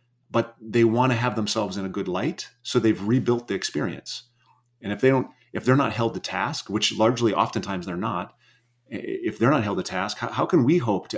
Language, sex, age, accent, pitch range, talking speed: English, male, 30-49, American, 100-125 Hz, 225 wpm